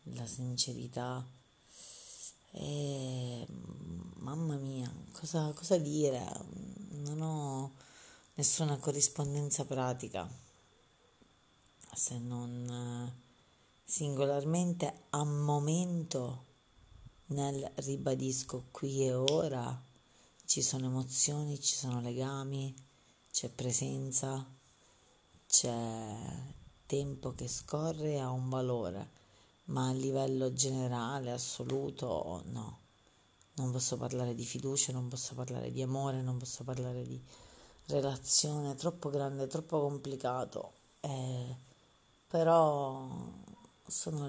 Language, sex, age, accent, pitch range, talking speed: Italian, female, 30-49, native, 125-145 Hz, 90 wpm